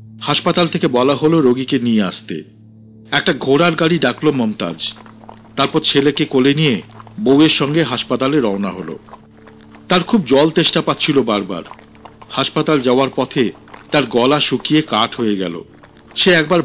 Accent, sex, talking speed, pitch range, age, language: native, male, 135 wpm, 110-165 Hz, 50-69, Bengali